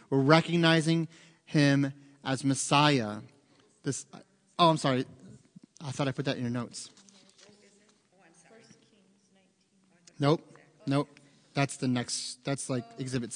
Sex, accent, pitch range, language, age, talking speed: male, American, 140-170 Hz, English, 30-49, 110 wpm